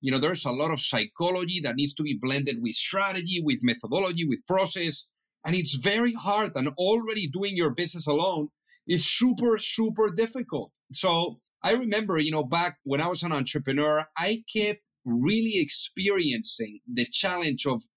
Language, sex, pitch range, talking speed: English, male, 145-195 Hz, 165 wpm